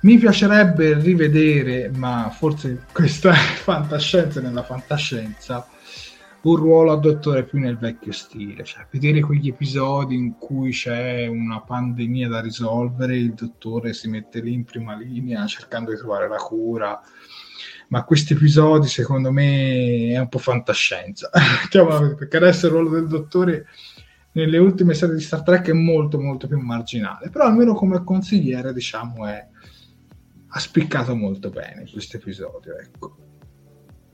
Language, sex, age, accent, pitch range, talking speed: Italian, male, 20-39, native, 120-165 Hz, 140 wpm